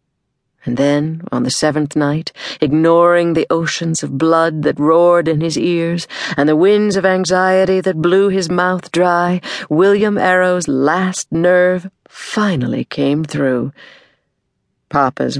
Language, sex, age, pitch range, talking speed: English, female, 50-69, 150-185 Hz, 135 wpm